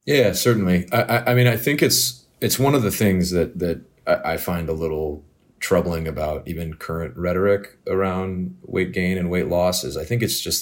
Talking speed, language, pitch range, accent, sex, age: 205 wpm, English, 80-95 Hz, American, male, 30-49